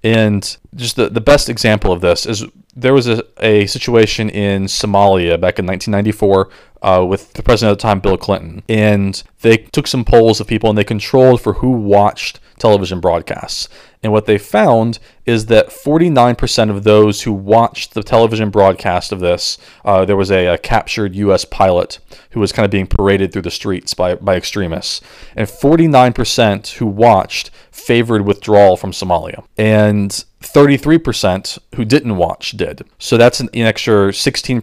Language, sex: English, male